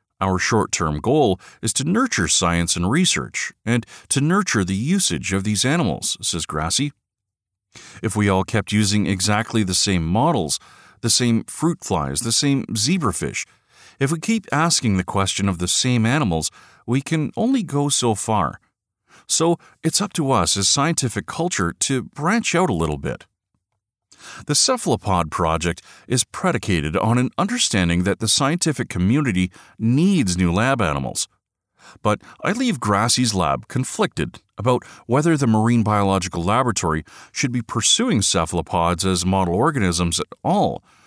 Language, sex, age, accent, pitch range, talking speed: English, male, 40-59, American, 95-135 Hz, 150 wpm